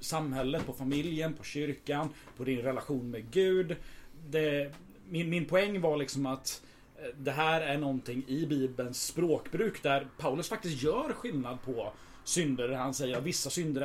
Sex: male